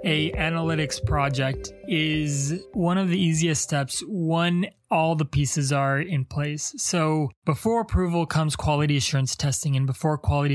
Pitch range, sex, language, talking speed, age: 140-175 Hz, male, English, 150 wpm, 20-39